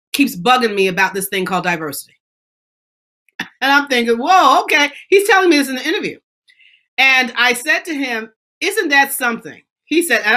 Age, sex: 40-59, female